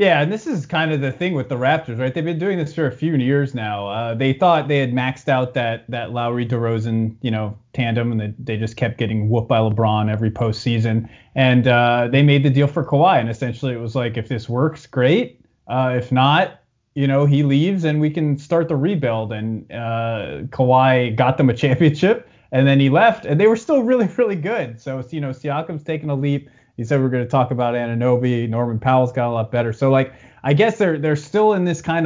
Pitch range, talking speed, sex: 120-150 Hz, 235 wpm, male